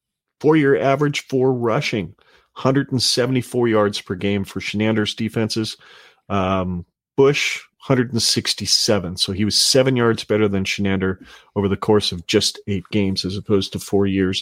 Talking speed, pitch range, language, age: 145 wpm, 100-120 Hz, English, 40-59